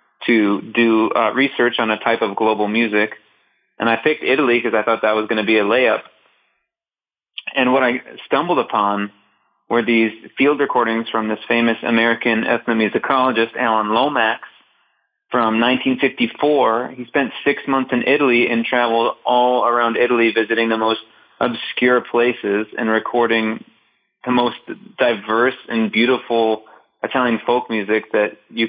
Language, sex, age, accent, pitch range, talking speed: English, male, 20-39, American, 110-125 Hz, 145 wpm